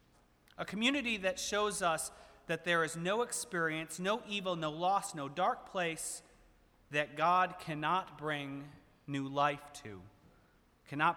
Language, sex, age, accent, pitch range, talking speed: English, male, 30-49, American, 115-160 Hz, 135 wpm